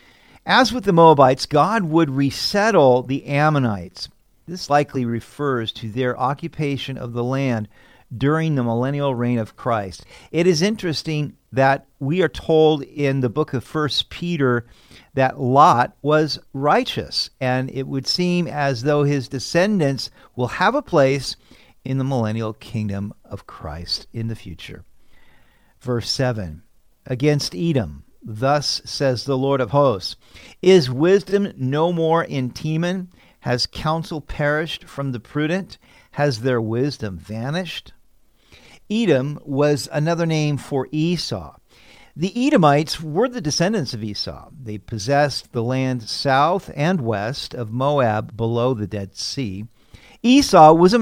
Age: 50-69